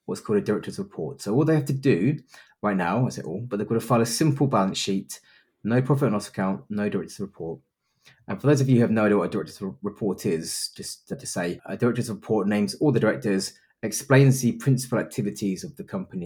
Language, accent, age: English, British, 30-49